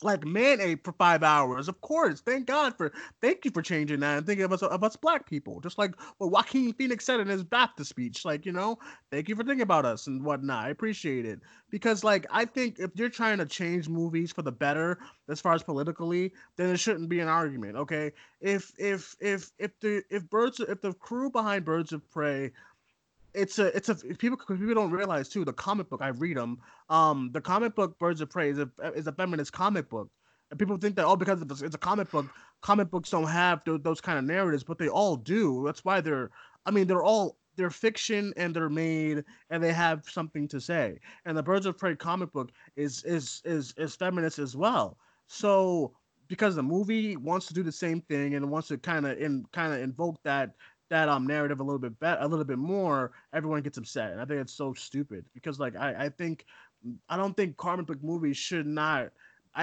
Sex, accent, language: male, American, English